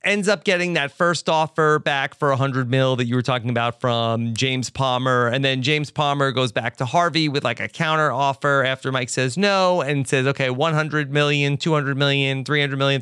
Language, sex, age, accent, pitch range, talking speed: English, male, 30-49, American, 125-155 Hz, 205 wpm